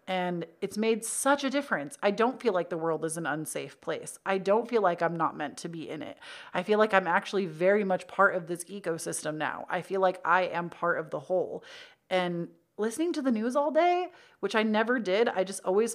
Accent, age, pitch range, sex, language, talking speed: American, 30-49, 170-225 Hz, female, English, 235 wpm